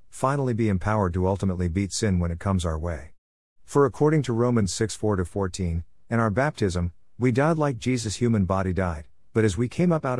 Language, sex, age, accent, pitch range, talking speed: English, male, 50-69, American, 90-115 Hz, 200 wpm